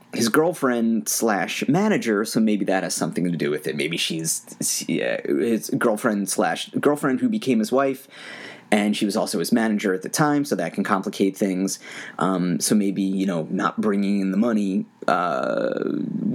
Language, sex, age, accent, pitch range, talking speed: English, male, 30-49, American, 95-115 Hz, 175 wpm